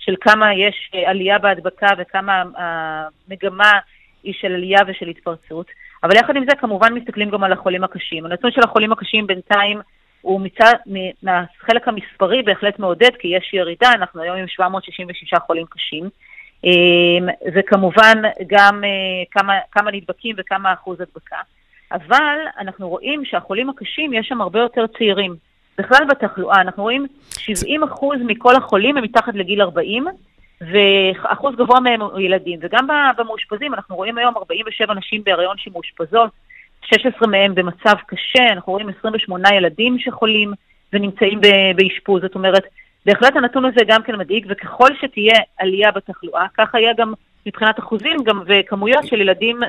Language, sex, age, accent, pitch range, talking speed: English, female, 30-49, Israeli, 190-230 Hz, 140 wpm